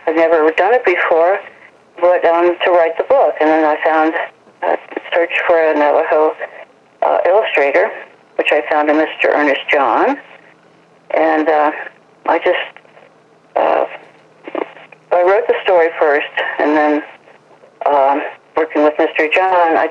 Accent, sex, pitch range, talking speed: American, female, 155-180 Hz, 140 wpm